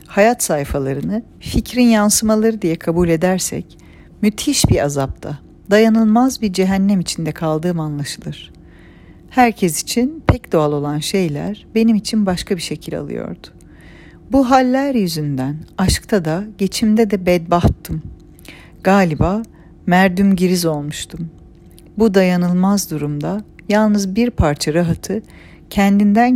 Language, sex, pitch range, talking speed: Turkish, female, 155-210 Hz, 110 wpm